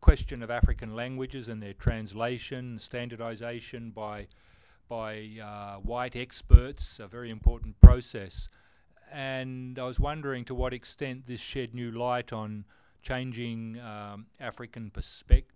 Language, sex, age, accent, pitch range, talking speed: English, male, 40-59, Australian, 105-125 Hz, 125 wpm